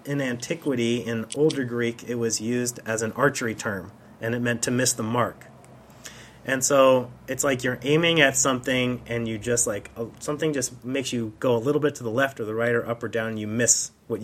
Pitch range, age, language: 115-145 Hz, 30-49, English